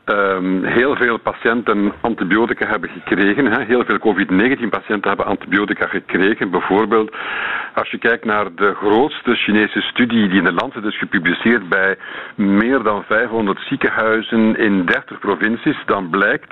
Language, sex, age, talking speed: Dutch, male, 50-69, 145 wpm